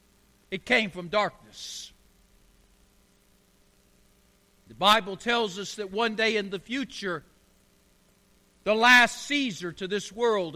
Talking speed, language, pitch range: 115 wpm, English, 180-225 Hz